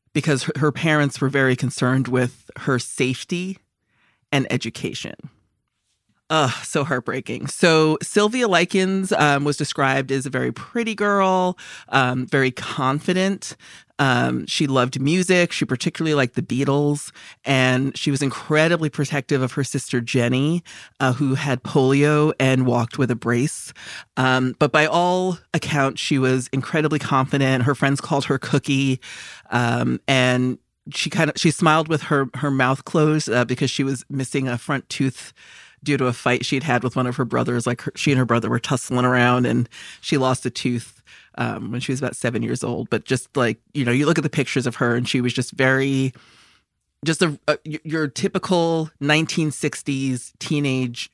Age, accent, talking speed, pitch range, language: 30-49, American, 170 wpm, 130-155 Hz, English